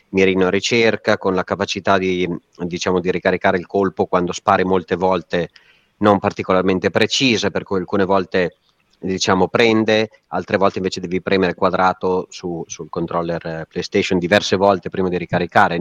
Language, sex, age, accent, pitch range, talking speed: Italian, male, 30-49, native, 90-110 Hz, 150 wpm